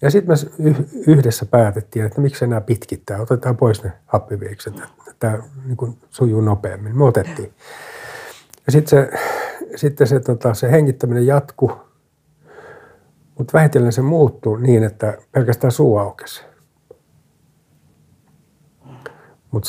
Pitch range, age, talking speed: 110-140 Hz, 60-79, 115 wpm